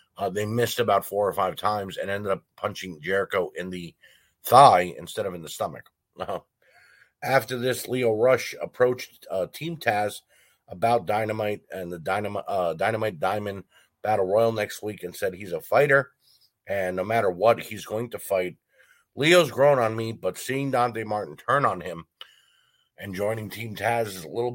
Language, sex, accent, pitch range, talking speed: English, male, American, 95-120 Hz, 175 wpm